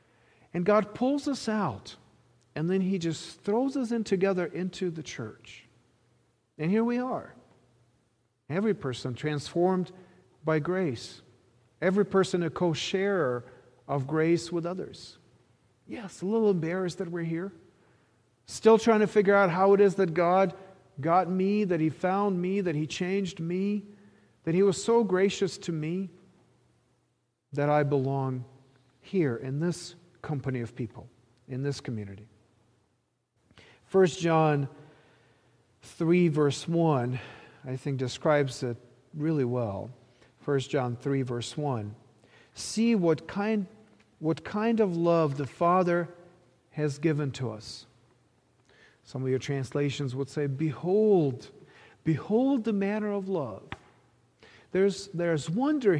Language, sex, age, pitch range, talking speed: English, male, 40-59, 125-185 Hz, 130 wpm